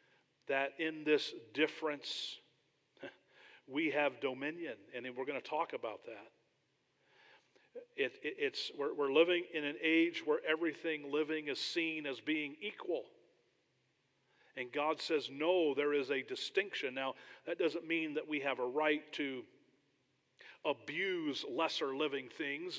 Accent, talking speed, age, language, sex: American, 140 wpm, 40-59, English, male